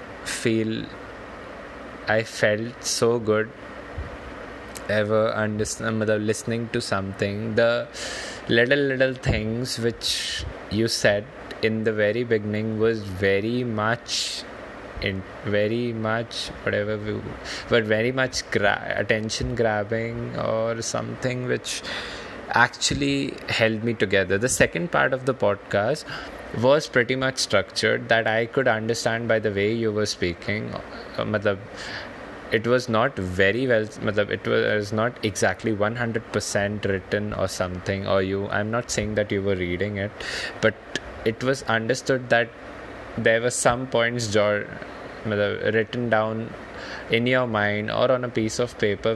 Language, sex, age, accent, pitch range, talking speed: English, male, 20-39, Indian, 105-120 Hz, 135 wpm